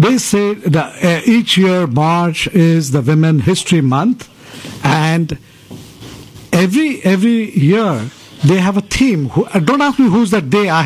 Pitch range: 130-185 Hz